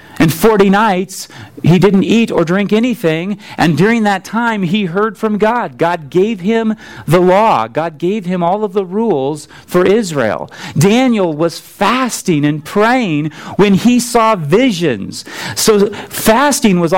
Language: English